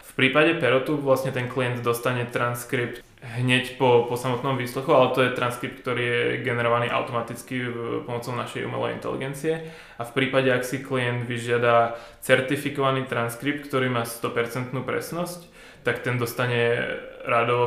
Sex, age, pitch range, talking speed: male, 20-39, 115-130 Hz, 145 wpm